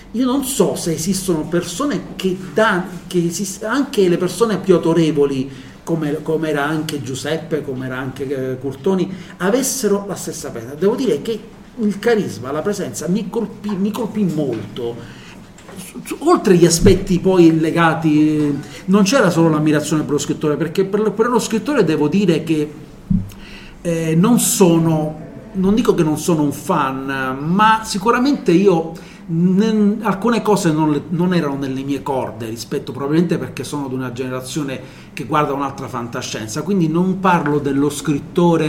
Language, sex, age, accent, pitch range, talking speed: Italian, male, 40-59, native, 140-190 Hz, 150 wpm